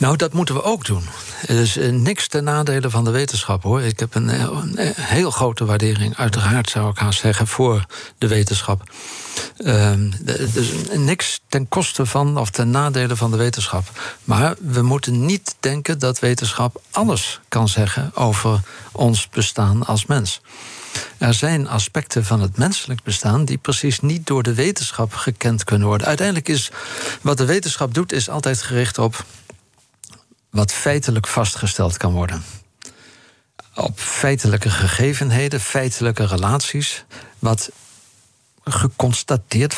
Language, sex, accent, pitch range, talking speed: Dutch, male, Dutch, 110-135 Hz, 145 wpm